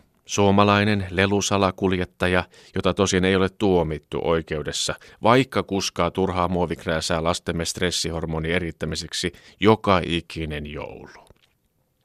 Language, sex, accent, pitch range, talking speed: Finnish, male, native, 85-110 Hz, 90 wpm